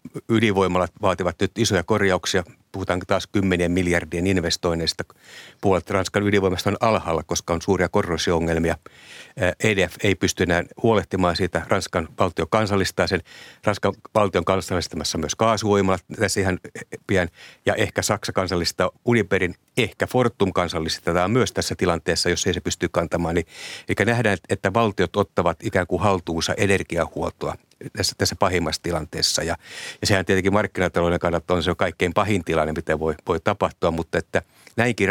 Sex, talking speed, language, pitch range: male, 145 wpm, Finnish, 85-100 Hz